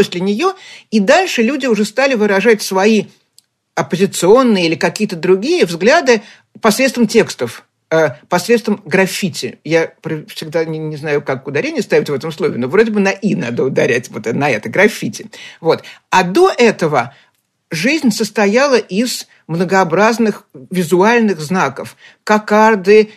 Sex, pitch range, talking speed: male, 175-220 Hz, 125 wpm